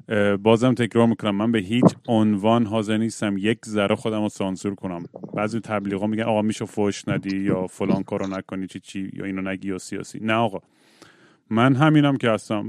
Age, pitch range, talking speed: 30-49, 110-140 Hz, 180 wpm